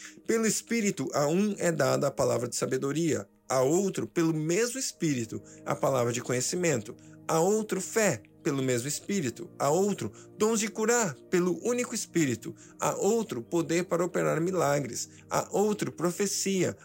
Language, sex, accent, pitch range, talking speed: Portuguese, male, Brazilian, 135-195 Hz, 150 wpm